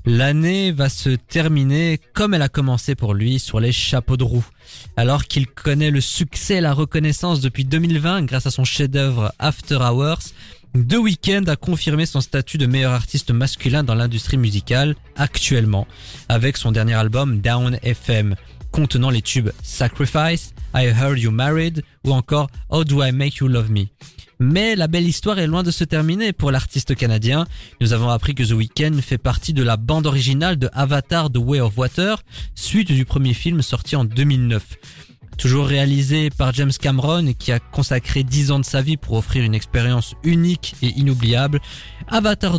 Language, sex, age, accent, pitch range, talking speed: French, male, 20-39, French, 120-150 Hz, 180 wpm